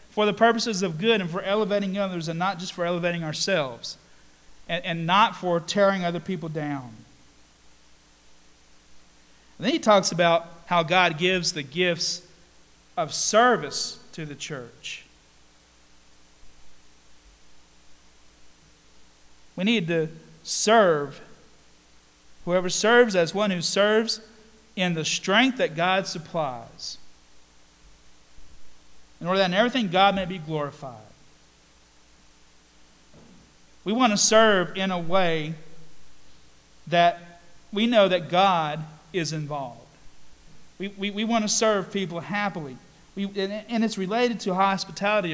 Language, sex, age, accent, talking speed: English, male, 40-59, American, 120 wpm